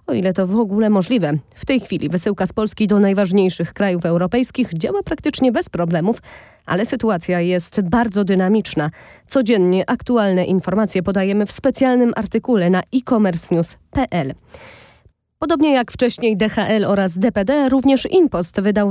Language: Polish